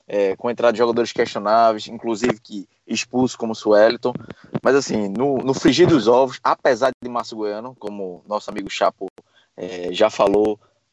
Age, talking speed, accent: 20-39, 145 wpm, Brazilian